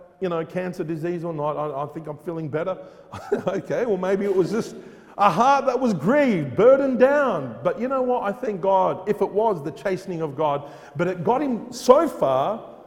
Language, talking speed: English, 210 wpm